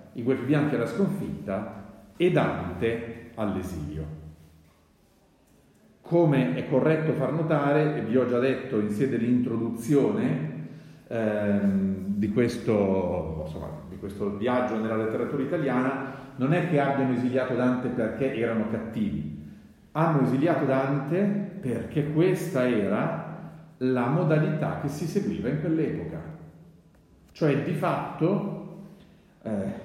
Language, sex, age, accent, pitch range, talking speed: Italian, male, 40-59, native, 110-155 Hz, 115 wpm